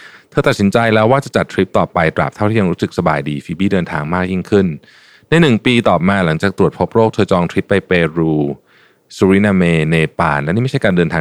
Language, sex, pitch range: Thai, male, 85-110 Hz